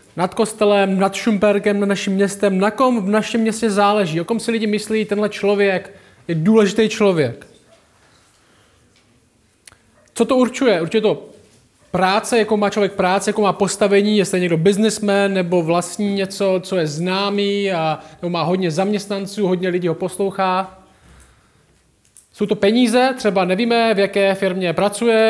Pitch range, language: 180-210 Hz, Czech